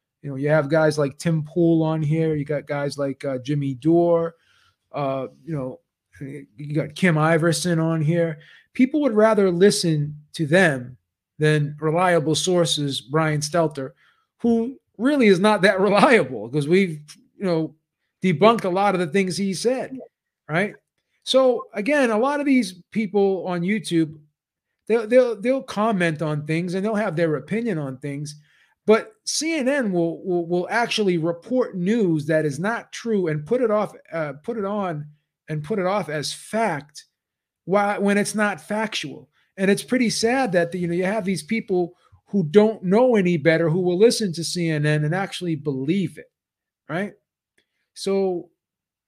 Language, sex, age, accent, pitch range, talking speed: English, male, 30-49, American, 155-210 Hz, 170 wpm